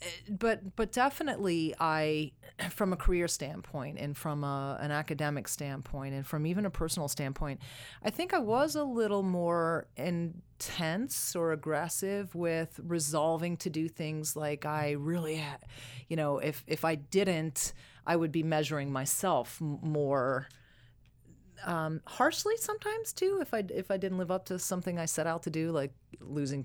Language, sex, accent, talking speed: English, female, American, 160 wpm